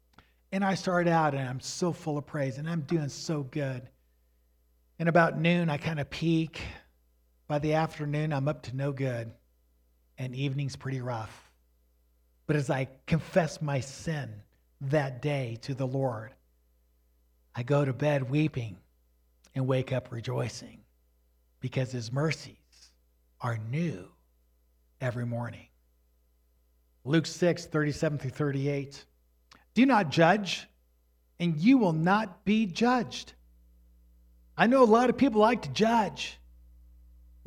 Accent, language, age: American, English, 50-69